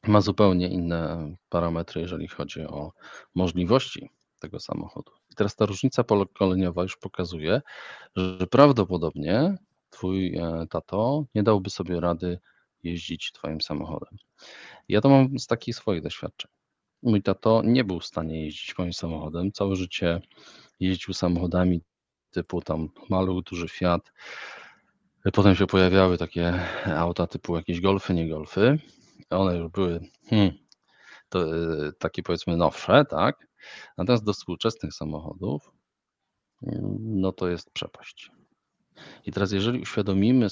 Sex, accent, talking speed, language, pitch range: male, native, 125 wpm, Polish, 85-100 Hz